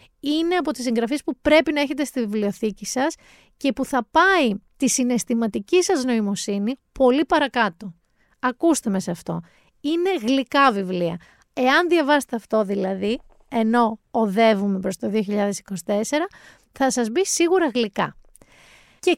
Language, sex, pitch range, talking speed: Greek, female, 210-300 Hz, 135 wpm